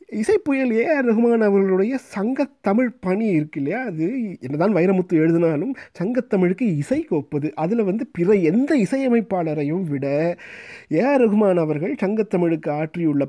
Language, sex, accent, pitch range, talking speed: Tamil, male, native, 155-225 Hz, 130 wpm